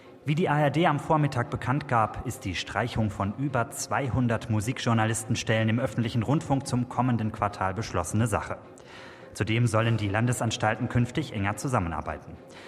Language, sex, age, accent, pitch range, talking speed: German, male, 30-49, German, 105-135 Hz, 135 wpm